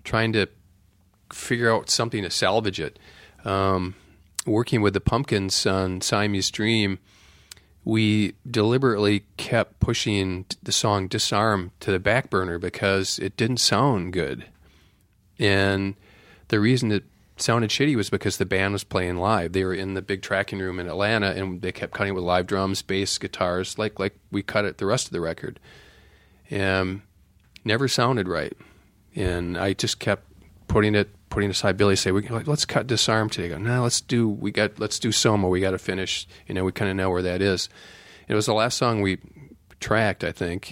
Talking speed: 185 wpm